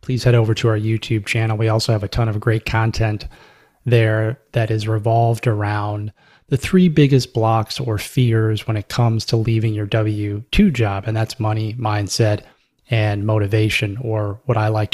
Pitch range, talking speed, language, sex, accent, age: 110-125 Hz, 175 wpm, English, male, American, 20-39